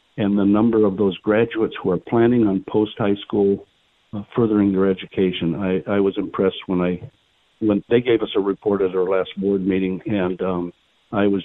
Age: 60-79